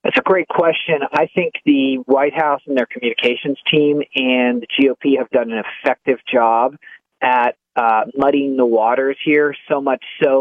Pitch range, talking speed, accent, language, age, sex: 135-180 Hz, 175 wpm, American, English, 40-59, male